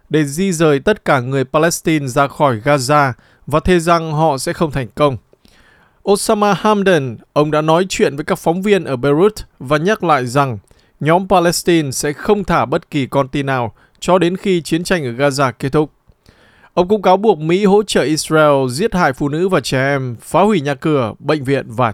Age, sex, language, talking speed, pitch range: 20-39, male, Vietnamese, 205 wpm, 140-180 Hz